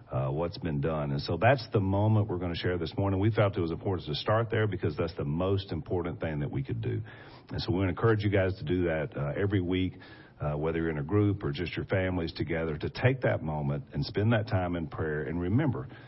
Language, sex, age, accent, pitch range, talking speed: English, male, 50-69, American, 80-110 Hz, 255 wpm